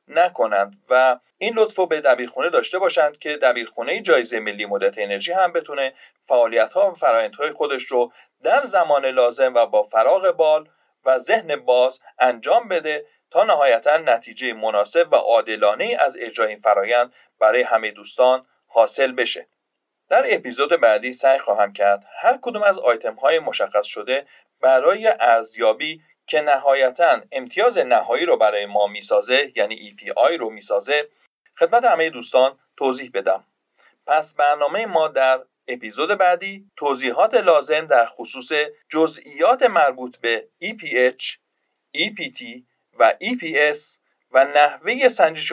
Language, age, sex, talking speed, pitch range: Persian, 40-59, male, 135 wpm, 130-205 Hz